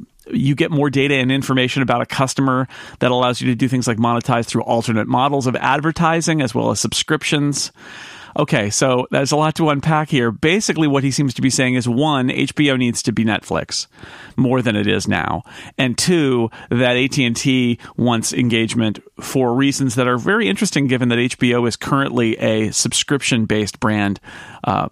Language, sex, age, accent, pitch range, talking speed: English, male, 40-59, American, 120-150 Hz, 180 wpm